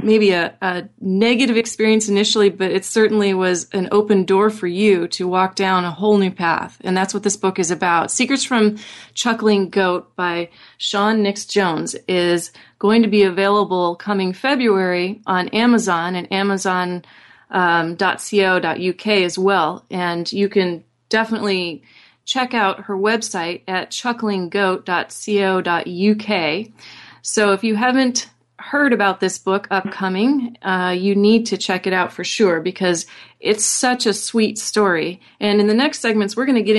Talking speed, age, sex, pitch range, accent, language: 155 wpm, 30-49, female, 185-215 Hz, American, English